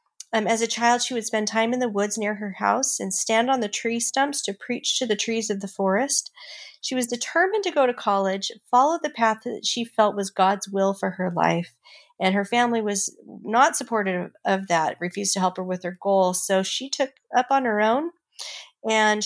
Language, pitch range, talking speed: English, 195-245 Hz, 220 wpm